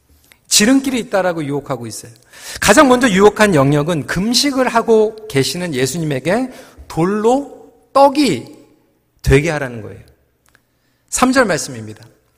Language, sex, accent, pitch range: Korean, male, native, 150-245 Hz